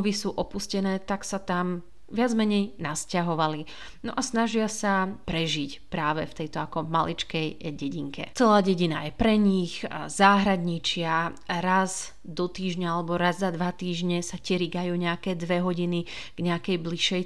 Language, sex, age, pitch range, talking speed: Slovak, female, 30-49, 165-185 Hz, 145 wpm